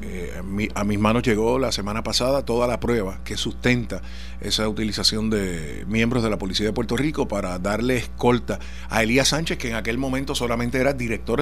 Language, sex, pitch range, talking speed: Spanish, male, 105-135 Hz, 200 wpm